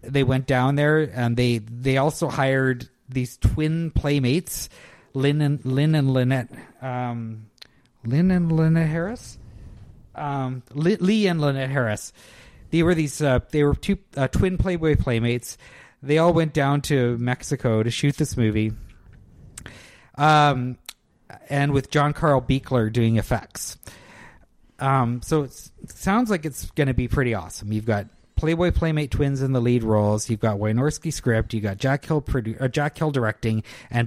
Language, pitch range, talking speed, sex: English, 115-150 Hz, 155 wpm, male